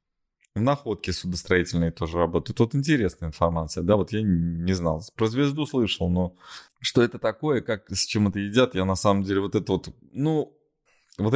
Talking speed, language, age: 175 wpm, Russian, 20-39